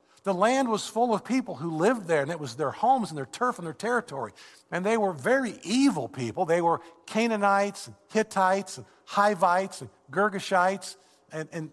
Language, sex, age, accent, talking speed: English, male, 50-69, American, 190 wpm